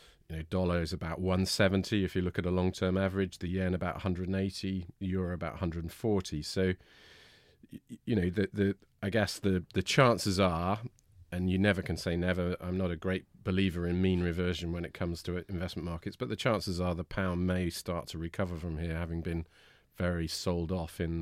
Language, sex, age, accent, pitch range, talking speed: English, male, 40-59, British, 80-95 Hz, 195 wpm